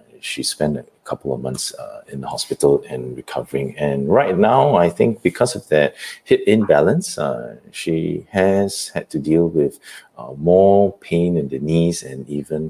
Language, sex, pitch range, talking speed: English, male, 70-95 Hz, 175 wpm